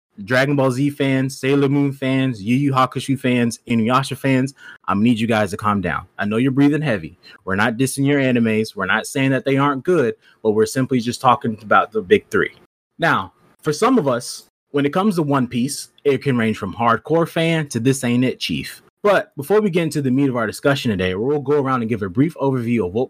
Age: 30-49